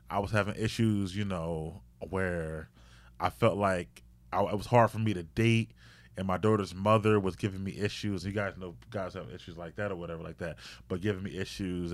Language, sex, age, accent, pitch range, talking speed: English, male, 20-39, American, 85-110 Hz, 205 wpm